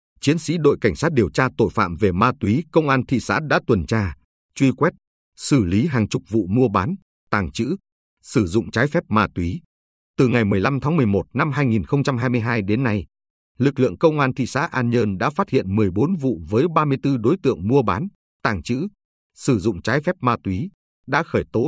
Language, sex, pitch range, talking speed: Vietnamese, male, 100-135 Hz, 210 wpm